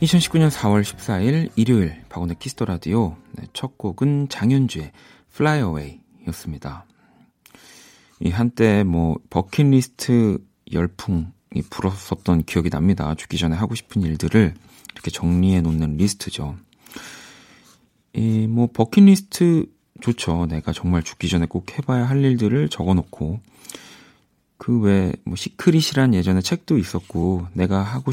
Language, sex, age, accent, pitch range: Korean, male, 40-59, native, 90-125 Hz